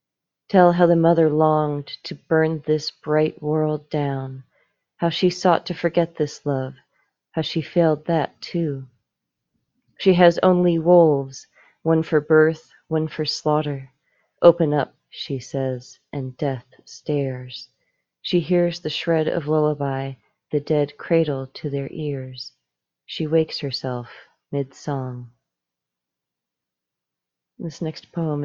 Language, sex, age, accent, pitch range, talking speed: English, female, 40-59, American, 135-165 Hz, 125 wpm